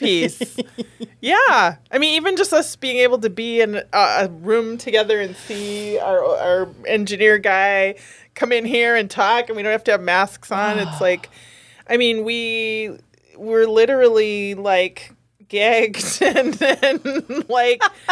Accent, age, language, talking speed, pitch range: American, 20-39, English, 150 wpm, 170-245 Hz